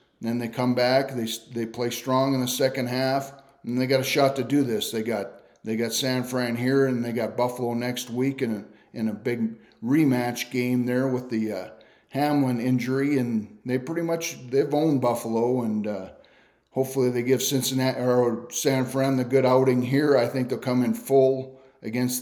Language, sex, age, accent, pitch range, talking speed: English, male, 40-59, American, 120-135 Hz, 195 wpm